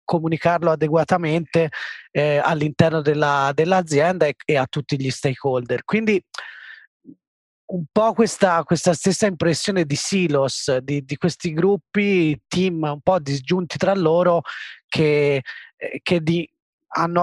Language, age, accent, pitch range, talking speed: Italian, 30-49, native, 140-175 Hz, 115 wpm